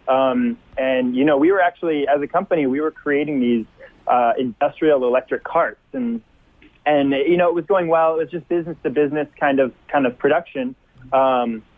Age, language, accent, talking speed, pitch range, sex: 20-39, English, American, 190 wpm, 130-165 Hz, male